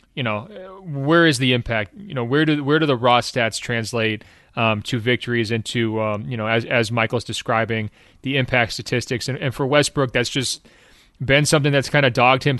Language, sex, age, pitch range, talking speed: English, male, 30-49, 120-140 Hz, 205 wpm